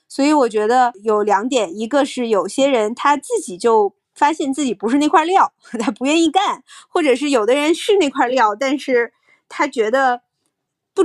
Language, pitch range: Chinese, 215-285 Hz